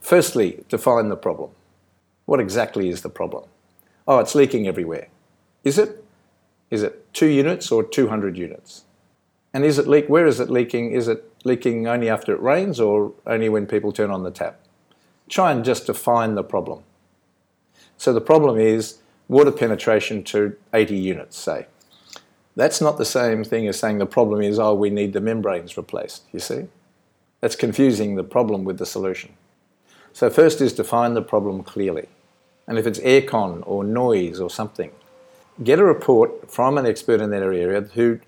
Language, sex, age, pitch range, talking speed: English, male, 50-69, 105-130 Hz, 175 wpm